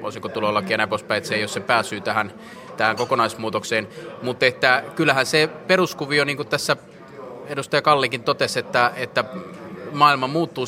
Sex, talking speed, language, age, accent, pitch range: male, 145 wpm, Finnish, 20-39, native, 105-135 Hz